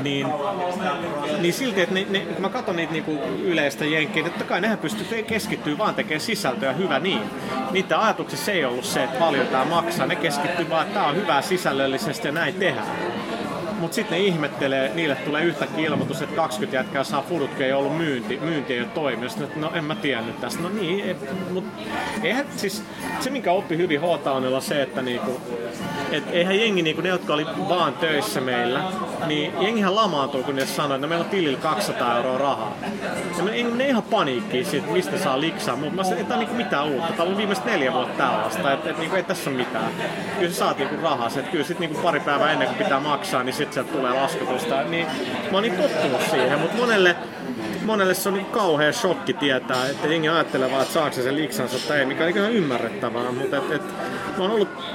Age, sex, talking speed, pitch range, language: 30-49, male, 210 wpm, 145-195 Hz, Finnish